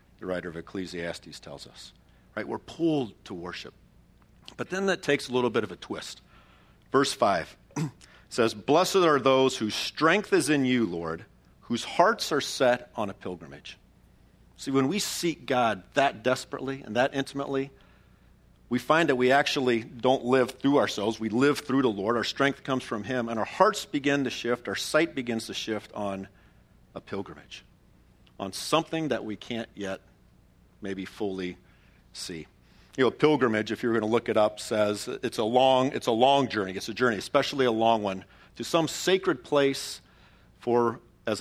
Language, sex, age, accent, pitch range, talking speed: English, male, 50-69, American, 100-135 Hz, 180 wpm